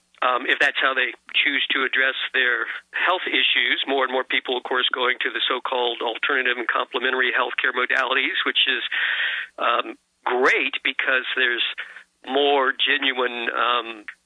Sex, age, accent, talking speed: male, 50-69, American, 150 wpm